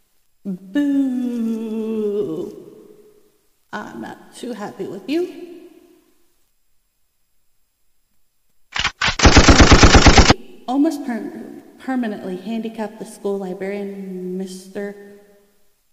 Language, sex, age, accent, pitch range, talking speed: English, female, 30-49, American, 195-230 Hz, 55 wpm